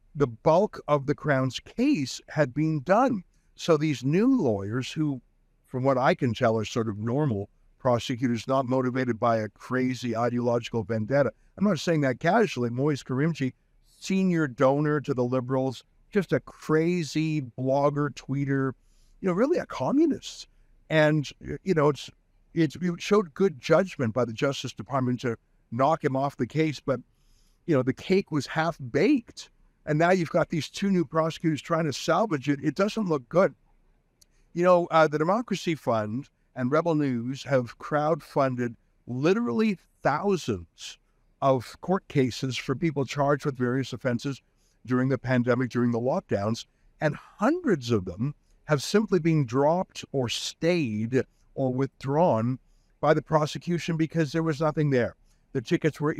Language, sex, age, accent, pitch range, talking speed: English, male, 60-79, American, 125-160 Hz, 155 wpm